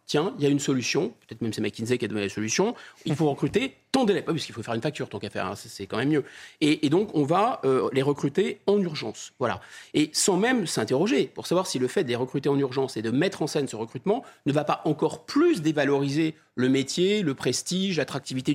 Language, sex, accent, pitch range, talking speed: French, male, French, 125-180 Hz, 250 wpm